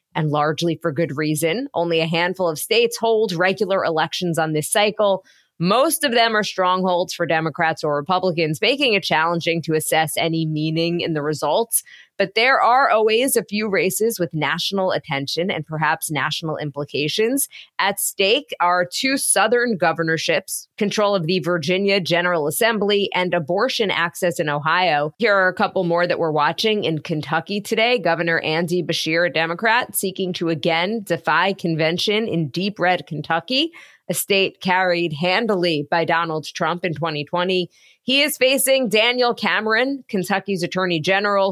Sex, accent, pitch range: female, American, 160-200 Hz